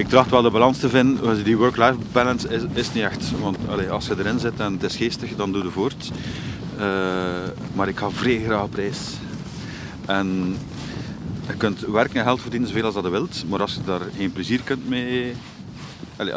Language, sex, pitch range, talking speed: Dutch, male, 100-130 Hz, 210 wpm